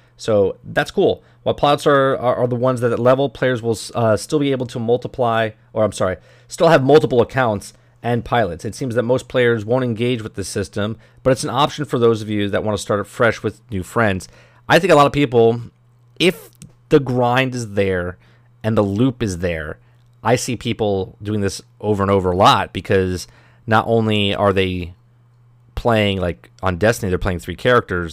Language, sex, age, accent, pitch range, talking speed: English, male, 30-49, American, 100-125 Hz, 205 wpm